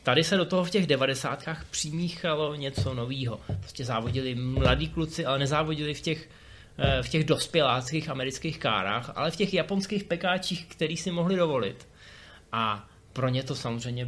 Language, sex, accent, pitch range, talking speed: Czech, male, native, 130-160 Hz, 160 wpm